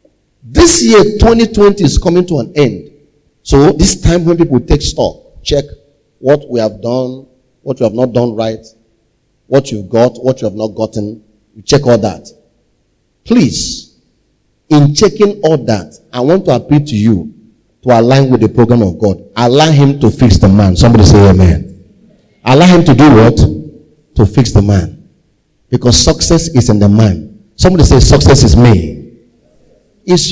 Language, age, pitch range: English, 40-59, 110-155 Hz